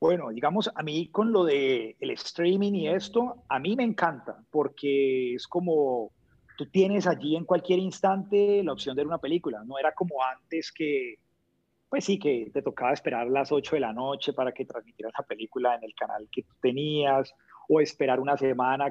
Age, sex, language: 30-49, male, Spanish